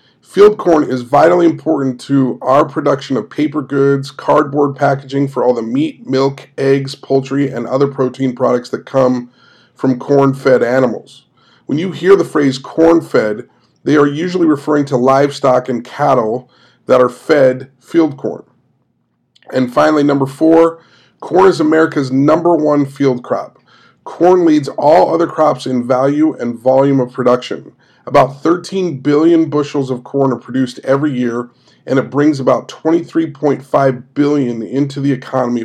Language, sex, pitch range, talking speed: English, male, 130-160 Hz, 150 wpm